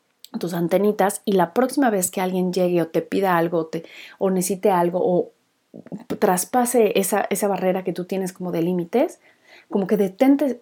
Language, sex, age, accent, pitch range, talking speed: Spanish, female, 30-49, Mexican, 175-225 Hz, 175 wpm